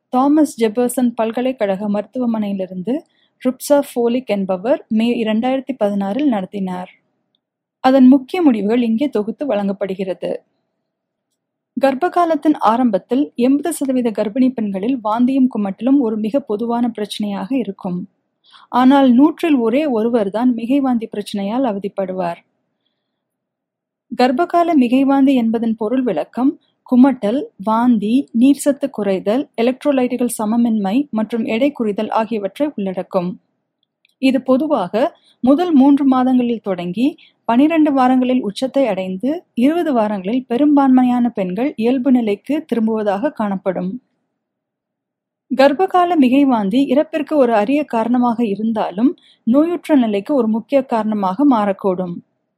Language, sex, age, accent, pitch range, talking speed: Tamil, female, 30-49, native, 215-275 Hz, 90 wpm